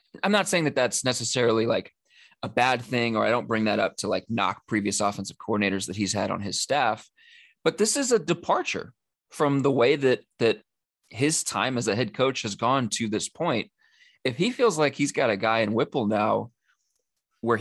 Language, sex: English, male